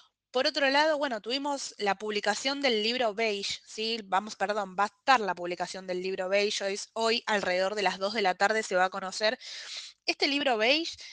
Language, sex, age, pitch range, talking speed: Spanish, female, 20-39, 190-245 Hz, 205 wpm